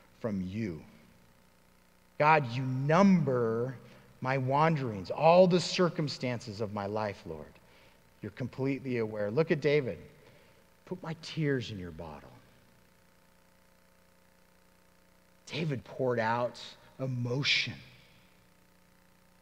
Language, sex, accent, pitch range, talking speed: English, male, American, 110-170 Hz, 95 wpm